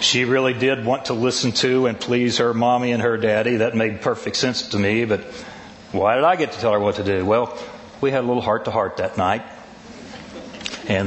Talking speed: 215 wpm